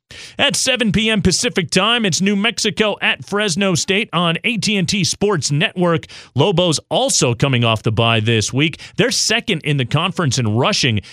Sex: male